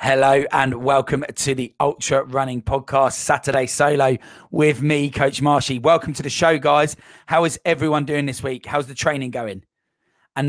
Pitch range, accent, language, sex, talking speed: 115-150 Hz, British, English, male, 170 wpm